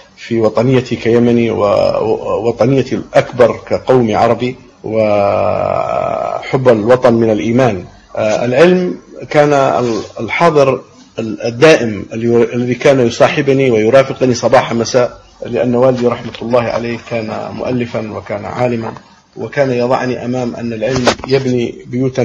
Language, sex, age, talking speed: Arabic, male, 50-69, 100 wpm